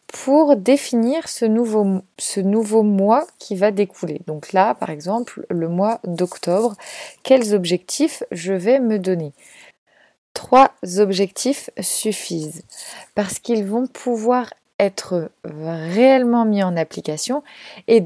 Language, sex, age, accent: French, female, 20-39, French